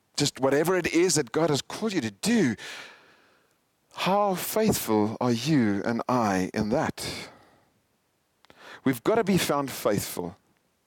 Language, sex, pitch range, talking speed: English, male, 110-150 Hz, 140 wpm